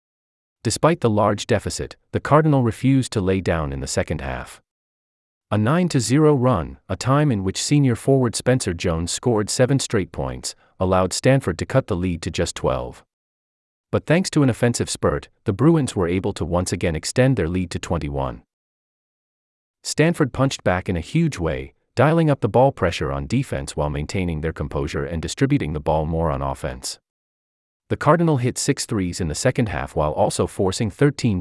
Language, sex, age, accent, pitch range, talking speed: English, male, 30-49, American, 80-130 Hz, 180 wpm